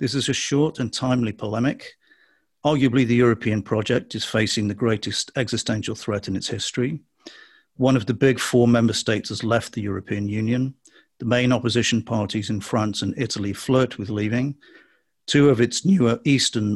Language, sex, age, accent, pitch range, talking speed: English, male, 50-69, British, 110-130 Hz, 170 wpm